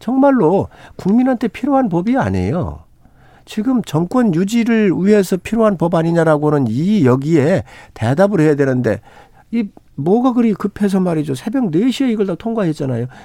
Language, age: Korean, 50-69